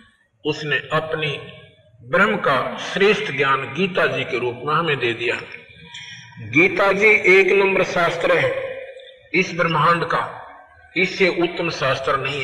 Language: Hindi